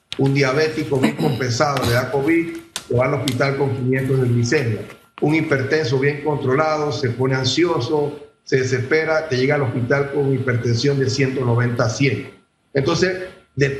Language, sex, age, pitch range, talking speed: Spanish, male, 40-59, 125-145 Hz, 155 wpm